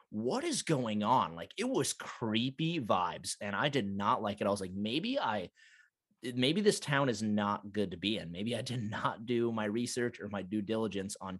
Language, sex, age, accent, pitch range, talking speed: English, male, 30-49, American, 100-120 Hz, 215 wpm